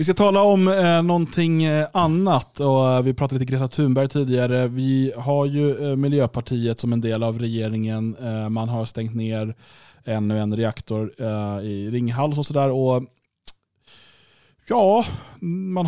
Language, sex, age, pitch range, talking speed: Swedish, male, 20-39, 115-150 Hz, 135 wpm